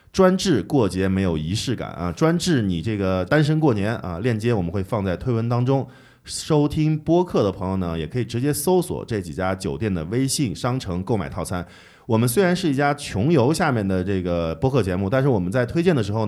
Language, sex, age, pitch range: Chinese, male, 20-39, 95-135 Hz